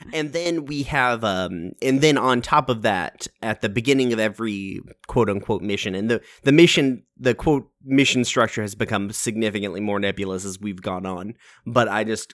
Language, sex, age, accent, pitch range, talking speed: English, male, 30-49, American, 100-125 Hz, 190 wpm